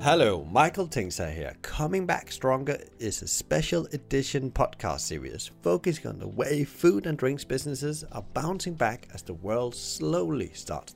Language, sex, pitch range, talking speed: English, male, 95-140 Hz, 160 wpm